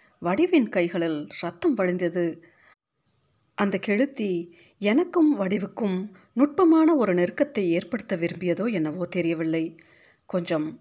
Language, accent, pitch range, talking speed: Tamil, native, 170-225 Hz, 90 wpm